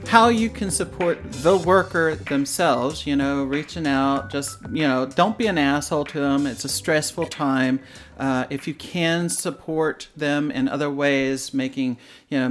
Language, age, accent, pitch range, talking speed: English, 40-59, American, 135-175 Hz, 175 wpm